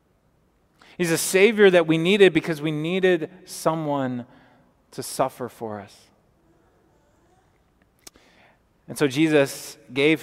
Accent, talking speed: American, 105 wpm